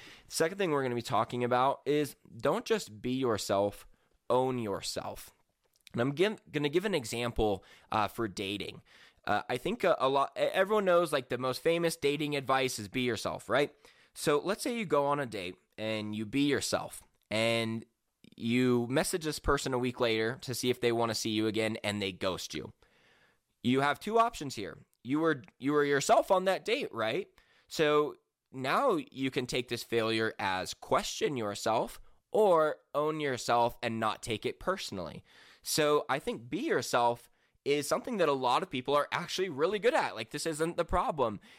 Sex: male